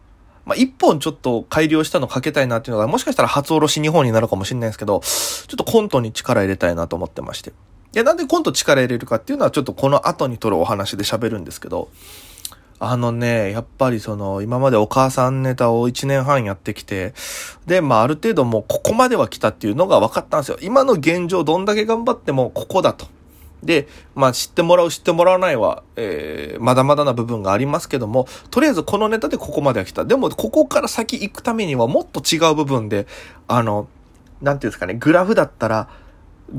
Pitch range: 105-160 Hz